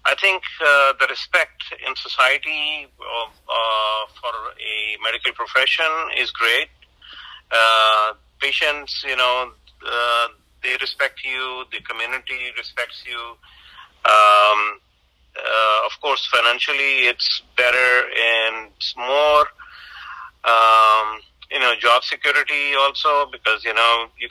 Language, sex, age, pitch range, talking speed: English, male, 40-59, 110-135 Hz, 120 wpm